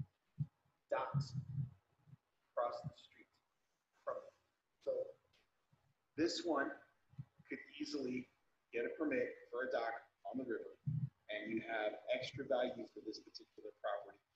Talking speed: 120 wpm